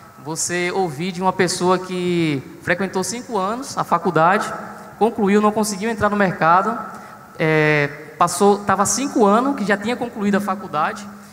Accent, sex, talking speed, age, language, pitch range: Brazilian, male, 145 wpm, 20-39, Portuguese, 170-205 Hz